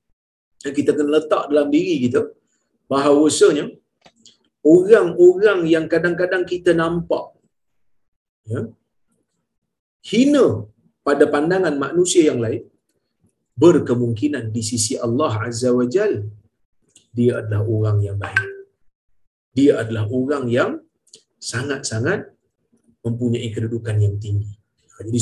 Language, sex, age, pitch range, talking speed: Malayalam, male, 40-59, 110-170 Hz, 100 wpm